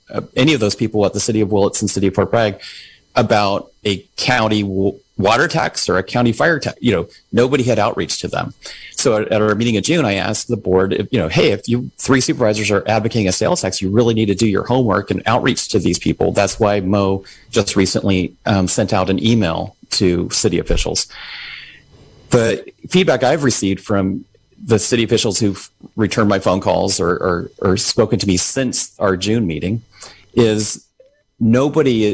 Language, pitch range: English, 95-115 Hz